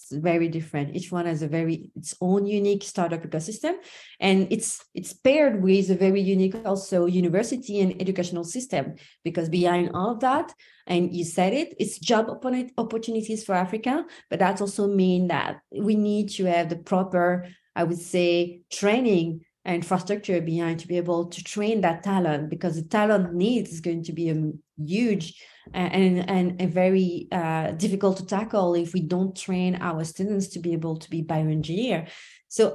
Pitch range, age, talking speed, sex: 175-210 Hz, 30-49, 170 wpm, female